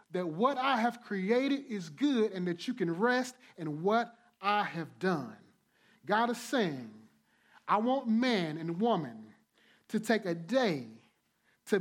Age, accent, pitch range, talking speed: 30-49, American, 180-235 Hz, 150 wpm